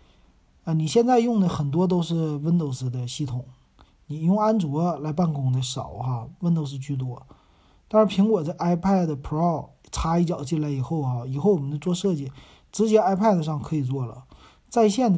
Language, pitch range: Chinese, 140-190 Hz